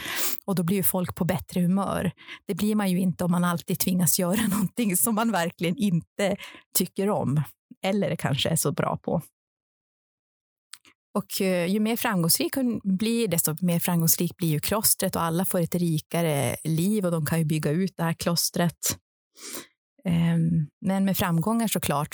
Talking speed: 165 wpm